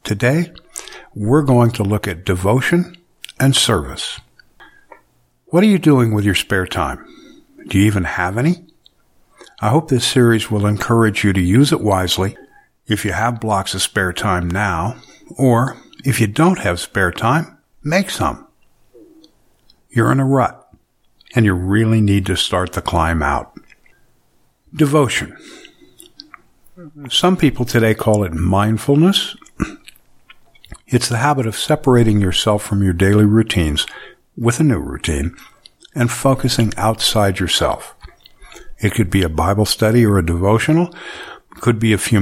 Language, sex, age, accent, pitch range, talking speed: English, male, 60-79, American, 95-135 Hz, 145 wpm